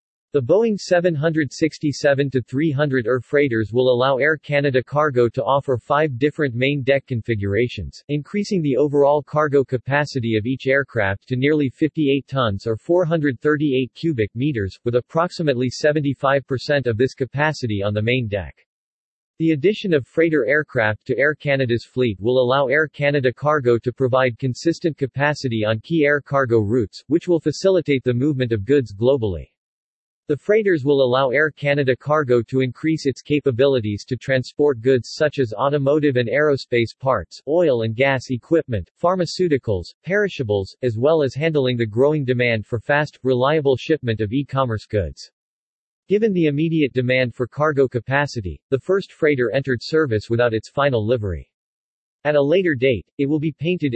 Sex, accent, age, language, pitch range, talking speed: male, American, 40-59, English, 125-150 Hz, 155 wpm